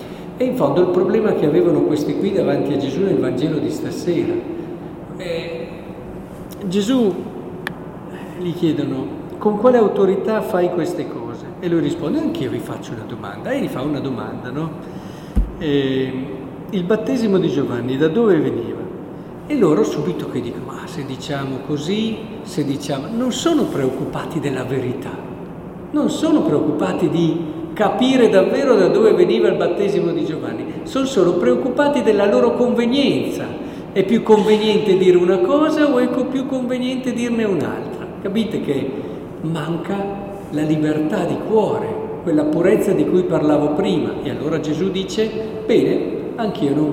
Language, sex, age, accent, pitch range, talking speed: Italian, male, 50-69, native, 165-235 Hz, 150 wpm